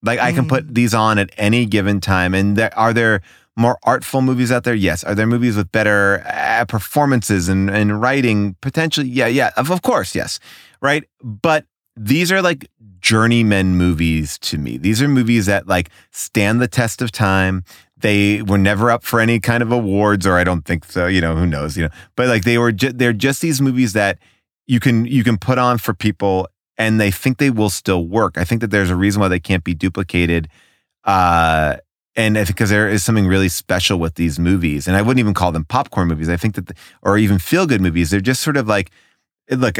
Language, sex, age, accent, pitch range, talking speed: English, male, 30-49, American, 90-115 Hz, 220 wpm